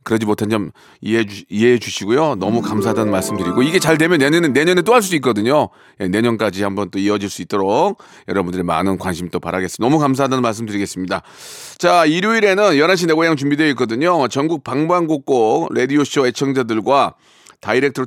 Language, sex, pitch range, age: Korean, male, 105-170 Hz, 40-59